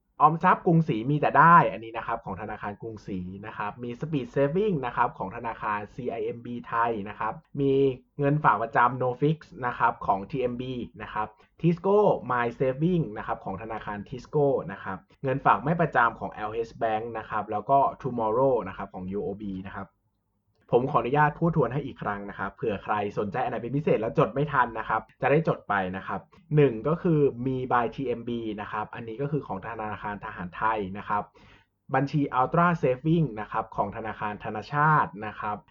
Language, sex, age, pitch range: Thai, male, 20-39, 105-145 Hz